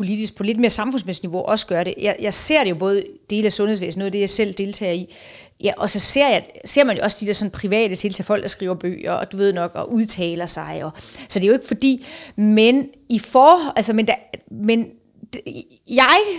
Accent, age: native, 30-49